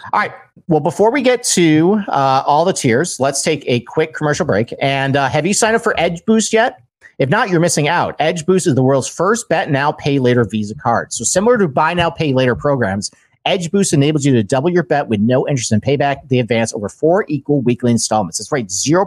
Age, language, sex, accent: 50-69, English, male, American